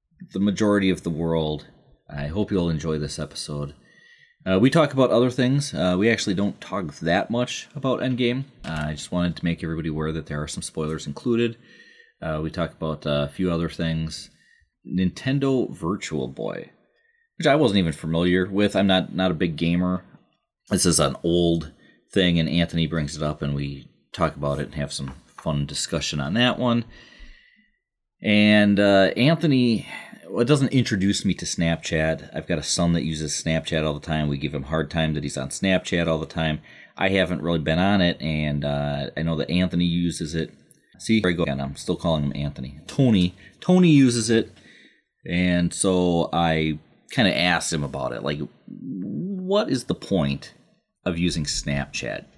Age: 30-49